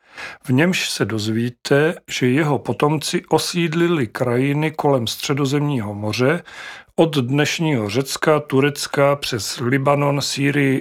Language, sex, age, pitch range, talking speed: Czech, male, 40-59, 120-145 Hz, 105 wpm